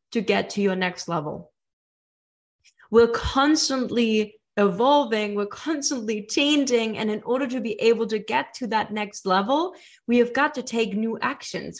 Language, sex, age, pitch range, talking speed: English, female, 20-39, 190-240 Hz, 160 wpm